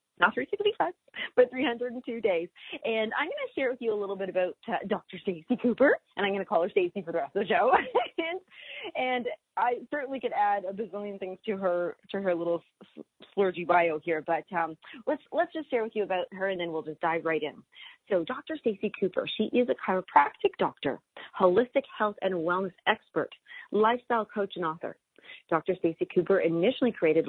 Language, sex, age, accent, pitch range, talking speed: English, female, 30-49, American, 170-220 Hz, 200 wpm